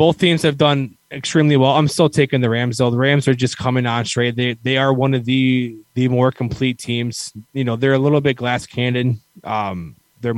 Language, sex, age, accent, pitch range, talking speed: English, male, 20-39, American, 105-130 Hz, 225 wpm